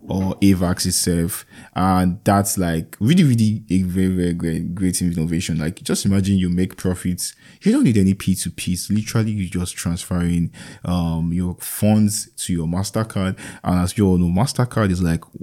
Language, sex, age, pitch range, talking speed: English, male, 20-39, 90-105 Hz, 165 wpm